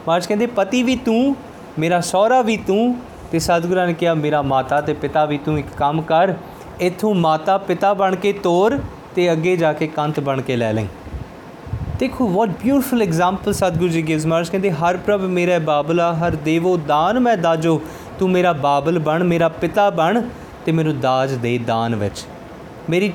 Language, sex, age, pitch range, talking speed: Punjabi, male, 20-39, 140-180 Hz, 180 wpm